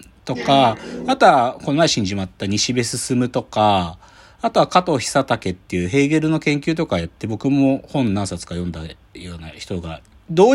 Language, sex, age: Japanese, male, 40-59